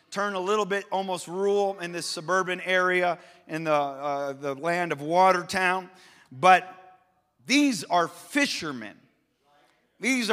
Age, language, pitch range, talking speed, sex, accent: 40-59, English, 180-225 Hz, 130 wpm, male, American